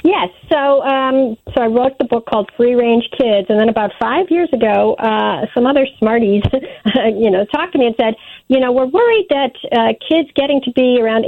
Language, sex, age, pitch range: English, female, 40-59, 200-250 Hz